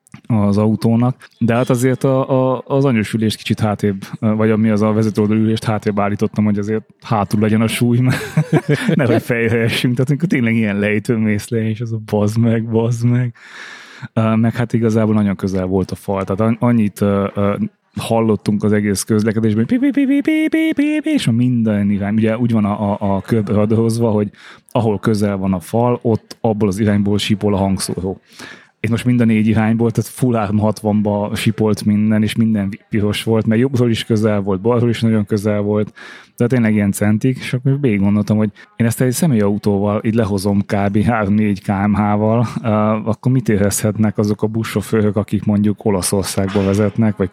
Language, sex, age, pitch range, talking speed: Hungarian, male, 20-39, 105-115 Hz, 170 wpm